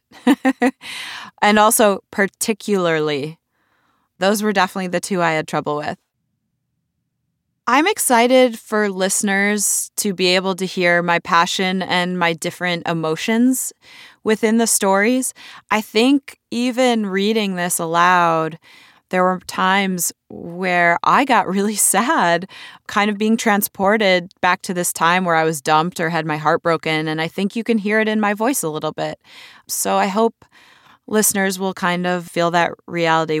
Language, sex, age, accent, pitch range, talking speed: English, female, 20-39, American, 170-220 Hz, 150 wpm